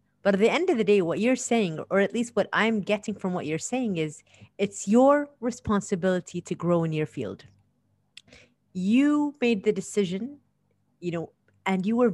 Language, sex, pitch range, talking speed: English, female, 170-220 Hz, 190 wpm